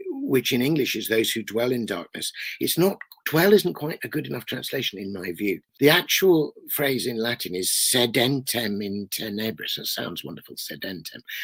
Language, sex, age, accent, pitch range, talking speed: English, male, 50-69, British, 100-140 Hz, 180 wpm